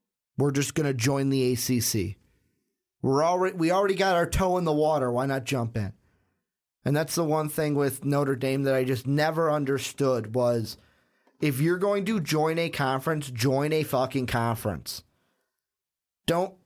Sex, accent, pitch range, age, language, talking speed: male, American, 130-165 Hz, 30-49, English, 165 wpm